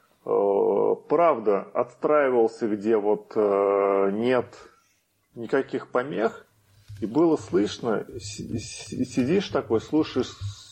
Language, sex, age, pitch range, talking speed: Russian, male, 30-49, 100-145 Hz, 75 wpm